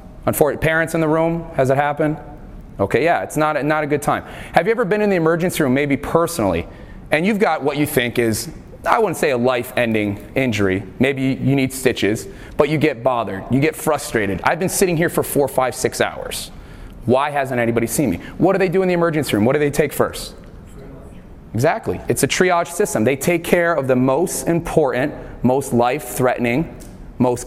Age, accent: 30-49, American